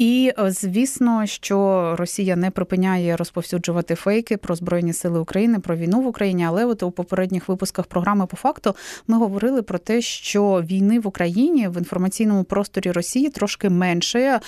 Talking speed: 160 wpm